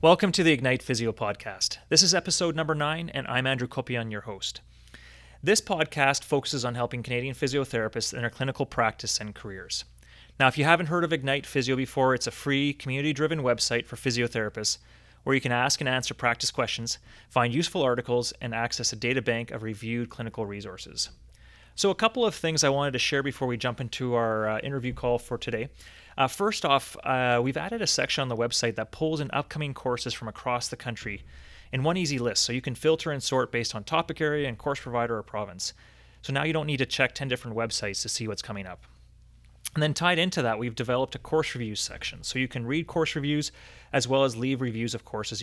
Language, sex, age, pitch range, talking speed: English, male, 30-49, 115-140 Hz, 215 wpm